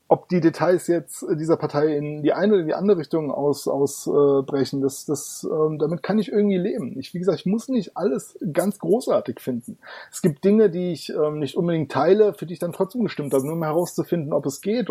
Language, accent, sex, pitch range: German, German, male, 145-185 Hz